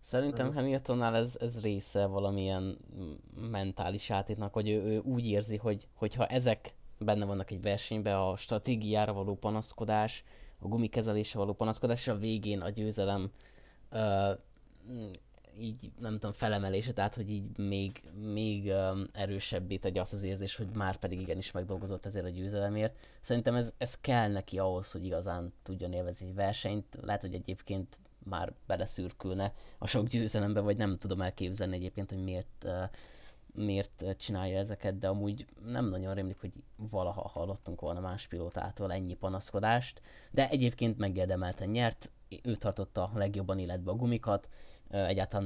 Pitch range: 95-110 Hz